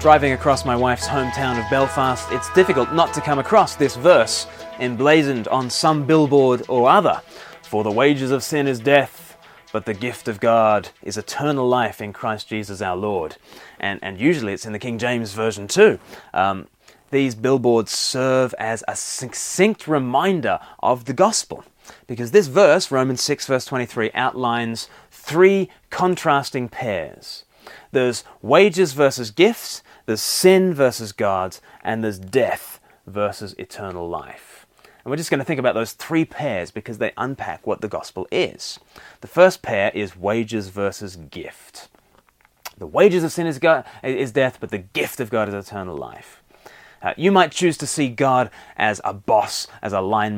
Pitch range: 110-145 Hz